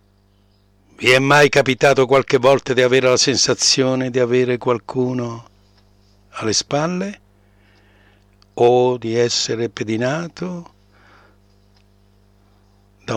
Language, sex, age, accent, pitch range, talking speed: Italian, male, 60-79, native, 100-150 Hz, 90 wpm